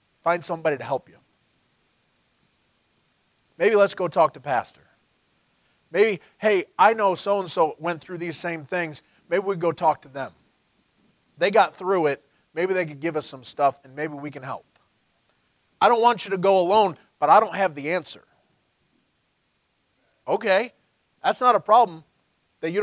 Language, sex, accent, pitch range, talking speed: English, male, American, 140-180 Hz, 170 wpm